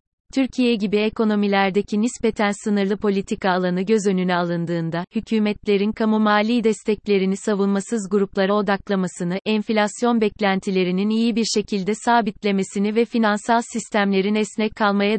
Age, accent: 30-49, native